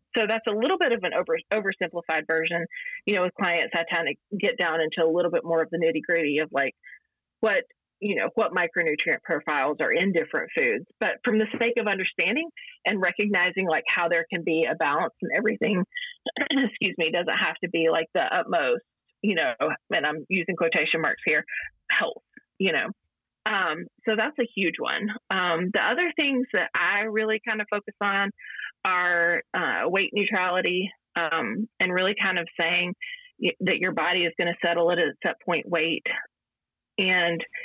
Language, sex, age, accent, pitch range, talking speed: English, female, 30-49, American, 170-220 Hz, 185 wpm